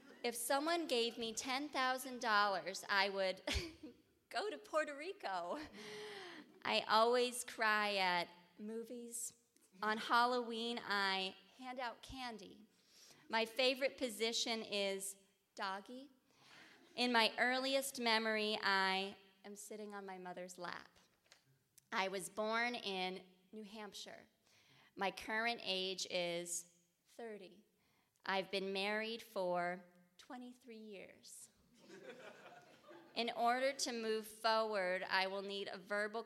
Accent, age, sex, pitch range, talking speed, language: American, 30-49, female, 185-235 Hz, 110 wpm, English